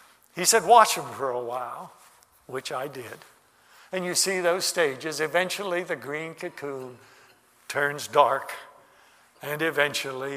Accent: American